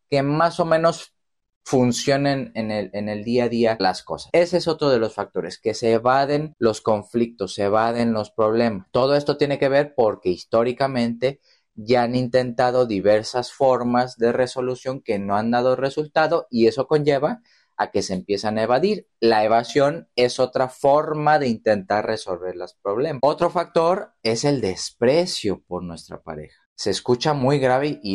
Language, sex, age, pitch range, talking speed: Spanish, male, 30-49, 110-135 Hz, 170 wpm